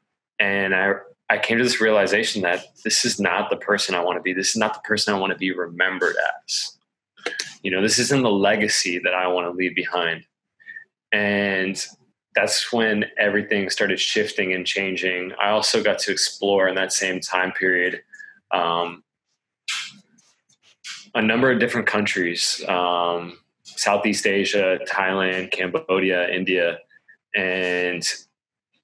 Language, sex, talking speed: English, male, 150 wpm